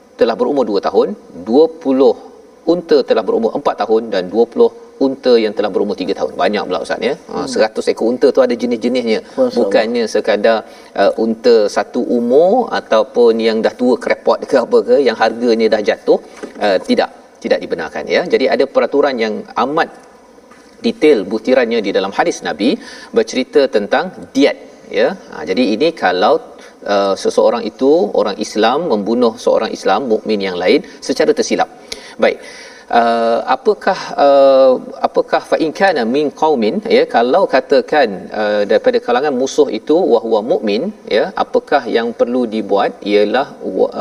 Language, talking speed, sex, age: Malayalam, 150 wpm, male, 40-59